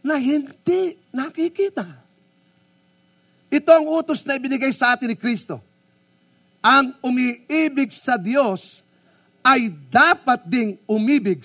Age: 50-69